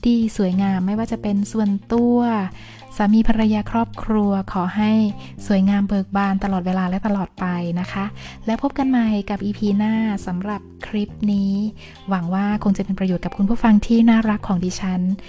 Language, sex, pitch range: Thai, female, 190-225 Hz